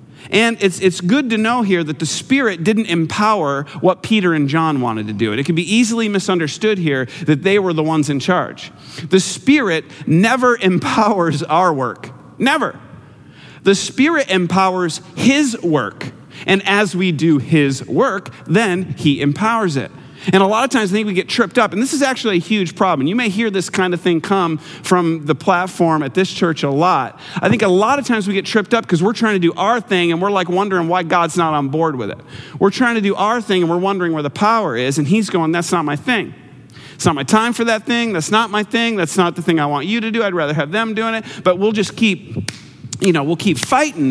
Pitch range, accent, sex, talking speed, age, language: 155-210 Hz, American, male, 235 wpm, 40-59, English